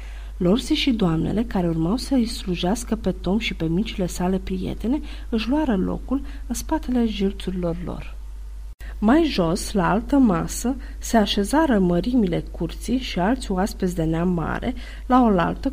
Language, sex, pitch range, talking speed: Romanian, female, 170-225 Hz, 150 wpm